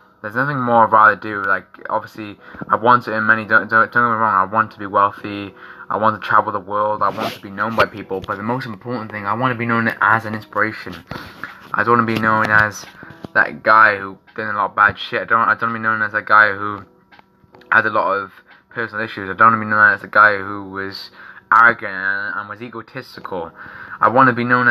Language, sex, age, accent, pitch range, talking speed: English, male, 20-39, British, 100-120 Hz, 255 wpm